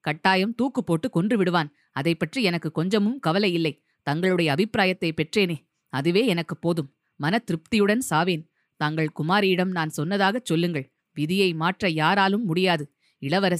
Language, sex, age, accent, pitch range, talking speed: Tamil, female, 20-39, native, 155-195 Hz, 130 wpm